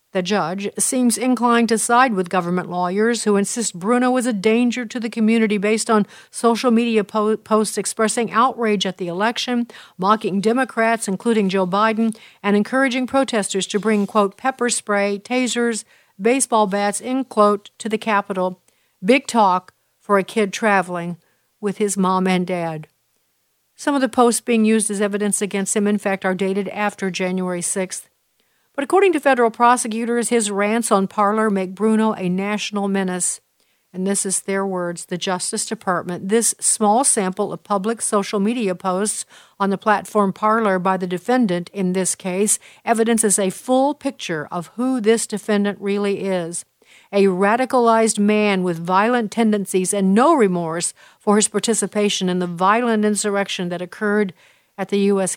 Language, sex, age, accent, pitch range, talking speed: English, female, 50-69, American, 190-230 Hz, 160 wpm